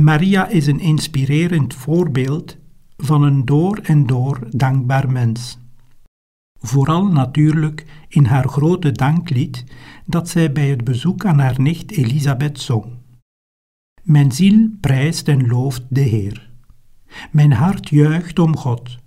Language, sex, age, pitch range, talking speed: Dutch, male, 60-79, 120-155 Hz, 125 wpm